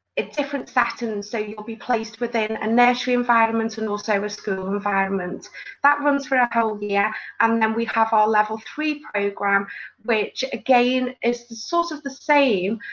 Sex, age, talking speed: female, 30-49, 165 wpm